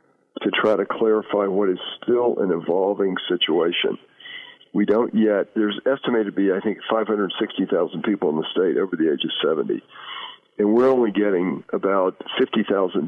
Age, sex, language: 50-69, male, English